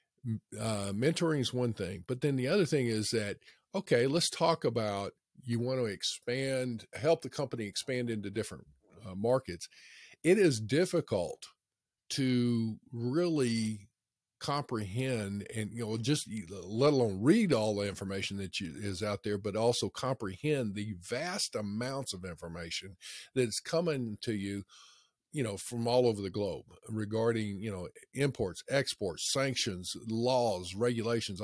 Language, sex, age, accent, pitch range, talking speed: English, male, 50-69, American, 105-130 Hz, 145 wpm